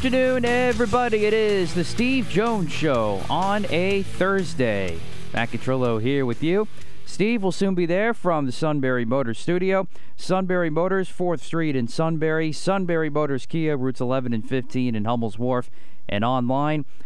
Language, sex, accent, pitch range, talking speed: English, male, American, 120-160 Hz, 155 wpm